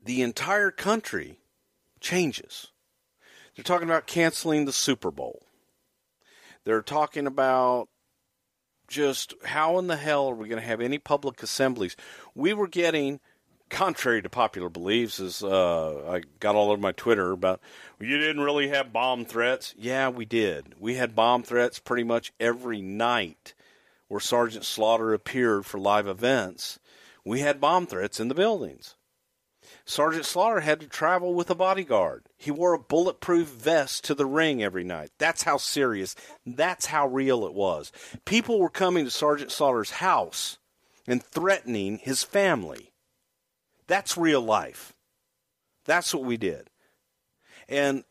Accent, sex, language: American, male, English